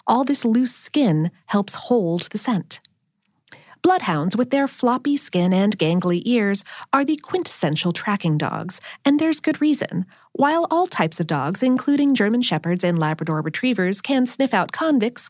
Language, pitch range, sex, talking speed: English, 190-280 Hz, female, 155 wpm